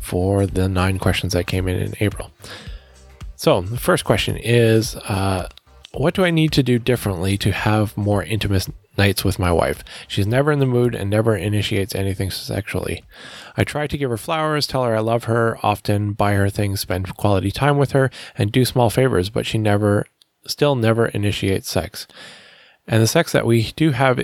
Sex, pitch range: male, 100-130 Hz